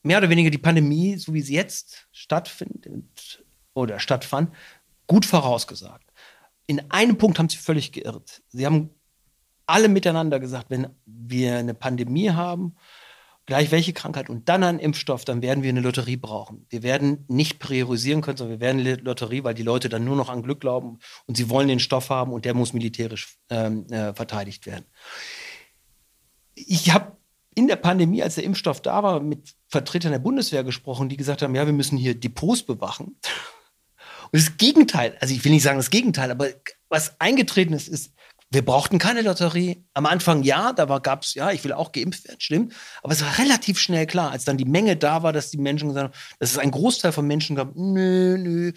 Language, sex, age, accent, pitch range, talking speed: German, male, 40-59, German, 130-175 Hz, 195 wpm